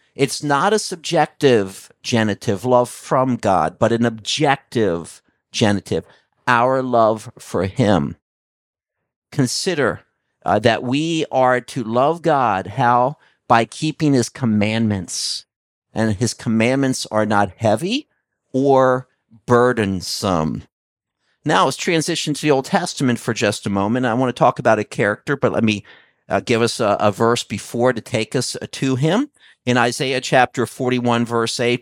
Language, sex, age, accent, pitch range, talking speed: English, male, 50-69, American, 110-150 Hz, 145 wpm